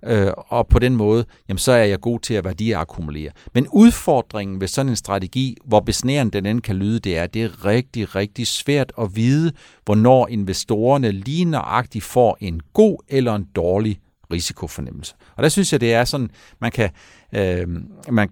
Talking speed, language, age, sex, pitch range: 170 wpm, Danish, 60-79, male, 95-130 Hz